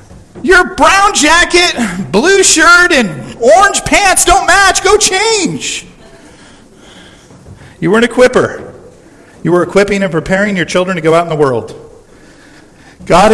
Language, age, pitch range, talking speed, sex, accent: English, 40-59, 145-190 Hz, 135 wpm, male, American